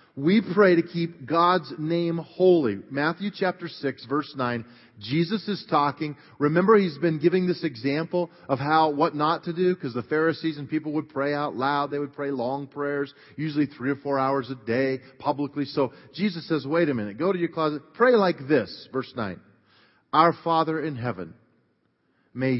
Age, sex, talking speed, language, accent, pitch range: 40-59, male, 185 wpm, English, American, 135-170 Hz